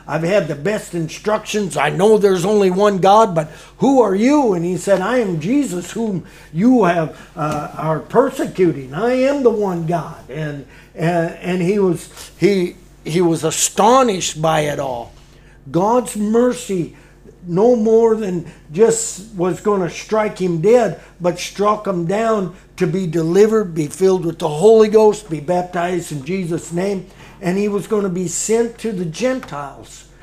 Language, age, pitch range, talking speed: English, 60-79, 155-200 Hz, 165 wpm